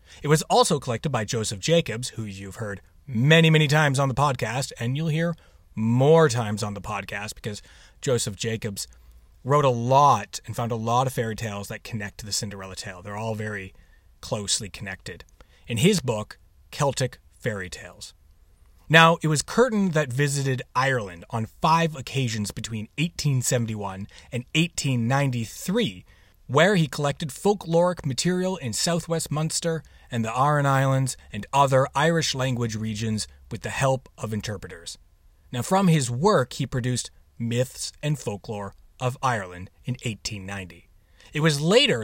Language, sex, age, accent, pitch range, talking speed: English, male, 30-49, American, 100-145 Hz, 150 wpm